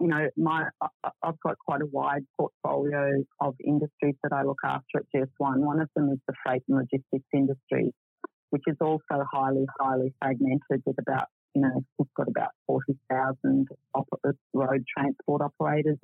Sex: female